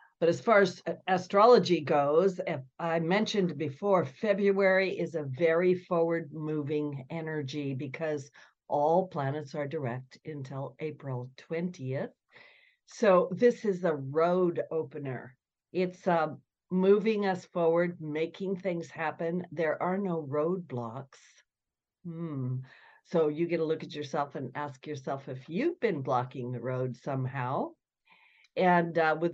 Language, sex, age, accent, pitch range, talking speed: English, female, 50-69, American, 150-185 Hz, 125 wpm